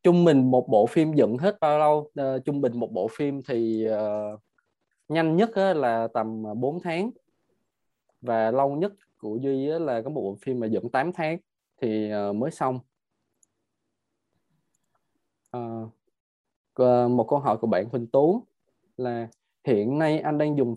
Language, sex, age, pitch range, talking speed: Vietnamese, male, 20-39, 115-145 Hz, 165 wpm